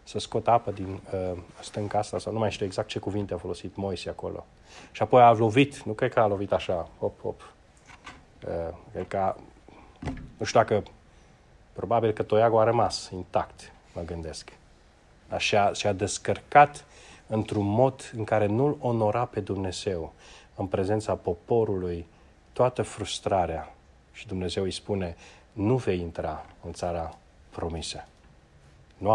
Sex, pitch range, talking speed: male, 90-120 Hz, 145 wpm